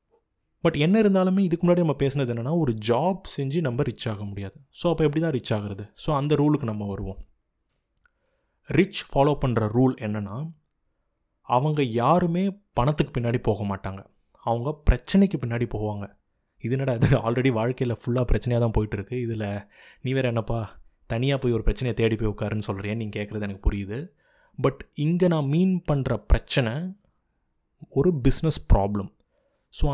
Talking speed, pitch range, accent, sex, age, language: 150 wpm, 110-155 Hz, native, male, 20-39, Tamil